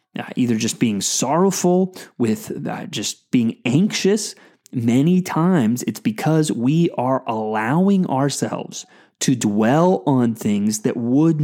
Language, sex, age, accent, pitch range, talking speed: English, male, 20-39, American, 120-180 Hz, 125 wpm